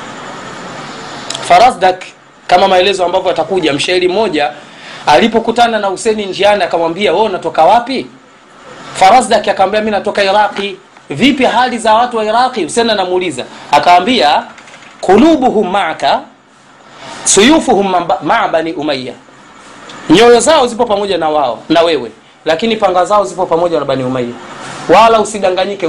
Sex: male